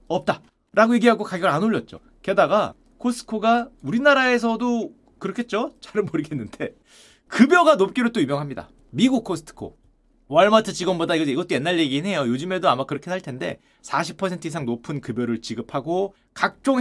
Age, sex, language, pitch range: 30-49, male, Korean, 175-250 Hz